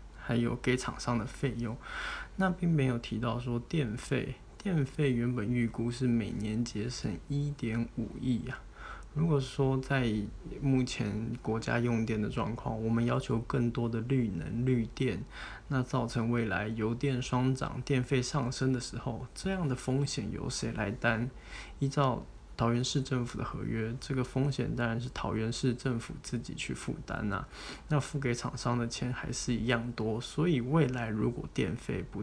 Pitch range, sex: 115-130 Hz, male